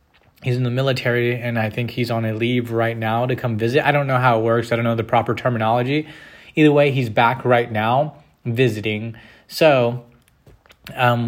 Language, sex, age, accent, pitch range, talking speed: English, male, 20-39, American, 110-125 Hz, 195 wpm